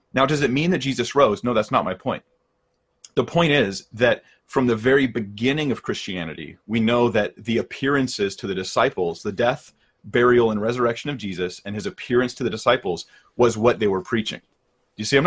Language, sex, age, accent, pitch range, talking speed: English, male, 30-49, American, 100-130 Hz, 200 wpm